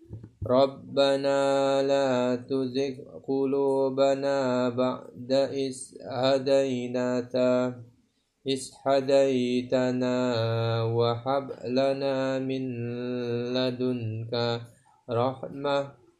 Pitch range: 125-140 Hz